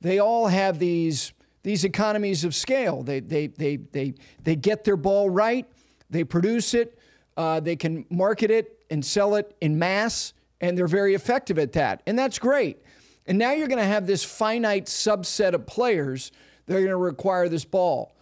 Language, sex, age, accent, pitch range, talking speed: English, male, 40-59, American, 175-220 Hz, 180 wpm